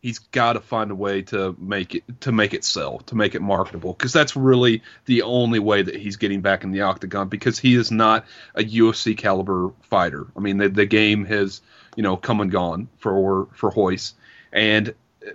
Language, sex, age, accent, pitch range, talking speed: English, male, 30-49, American, 100-120 Hz, 205 wpm